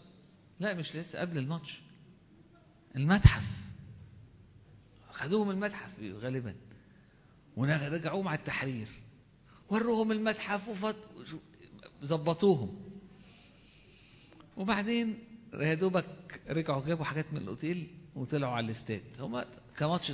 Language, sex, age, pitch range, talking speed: Arabic, male, 50-69, 145-190 Hz, 85 wpm